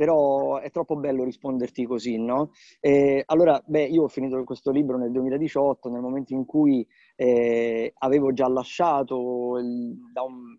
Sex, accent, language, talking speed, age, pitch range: male, native, Italian, 160 wpm, 20-39, 125-150 Hz